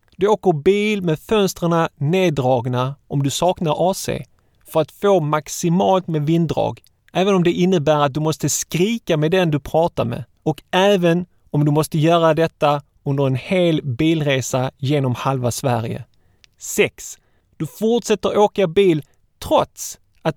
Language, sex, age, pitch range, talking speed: Swedish, male, 30-49, 135-180 Hz, 145 wpm